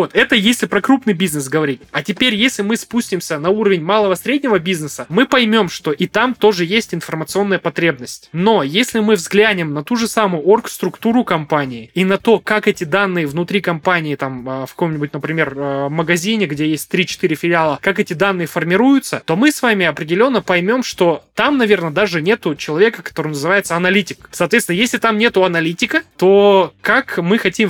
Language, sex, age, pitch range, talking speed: Russian, male, 20-39, 160-210 Hz, 175 wpm